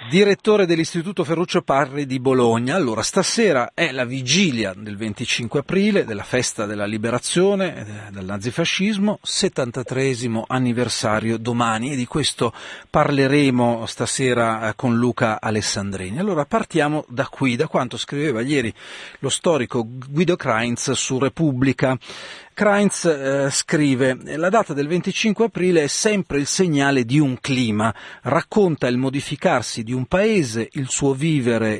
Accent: native